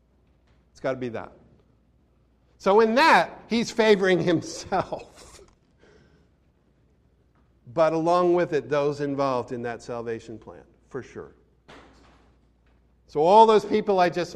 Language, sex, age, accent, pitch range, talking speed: English, male, 50-69, American, 140-215 Hz, 115 wpm